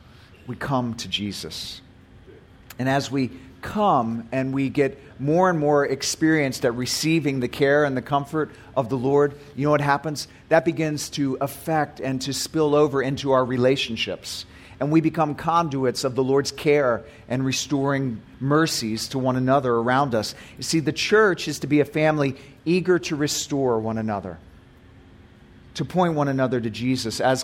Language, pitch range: English, 120-150 Hz